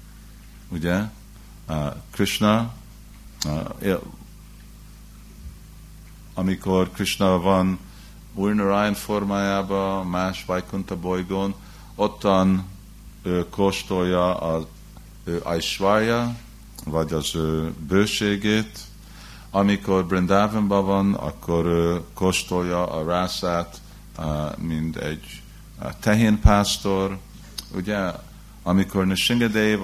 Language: Hungarian